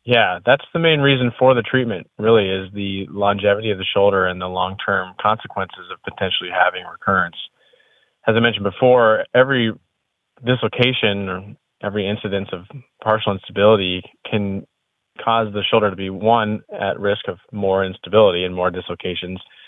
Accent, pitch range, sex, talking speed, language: American, 90-110 Hz, male, 150 wpm, English